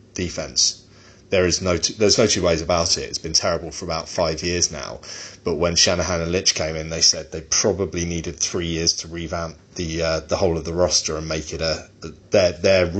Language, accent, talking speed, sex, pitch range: English, British, 220 wpm, male, 85-95 Hz